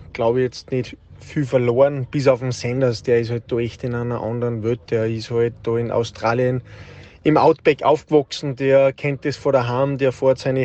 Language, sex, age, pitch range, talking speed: German, male, 20-39, 120-140 Hz, 195 wpm